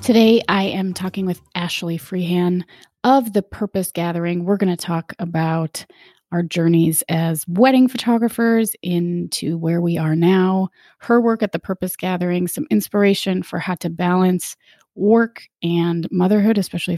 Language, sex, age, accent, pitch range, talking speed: English, female, 30-49, American, 165-215 Hz, 150 wpm